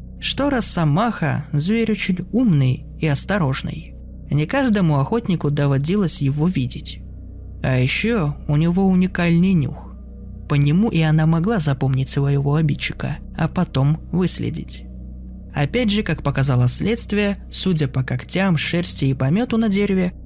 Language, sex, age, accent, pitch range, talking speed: Russian, male, 20-39, native, 135-185 Hz, 125 wpm